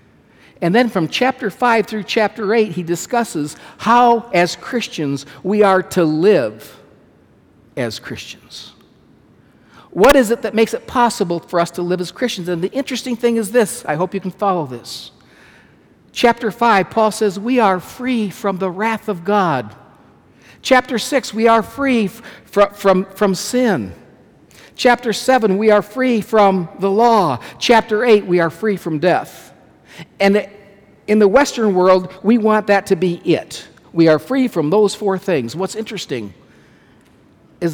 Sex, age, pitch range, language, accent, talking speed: male, 60-79, 175-230 Hz, English, American, 160 wpm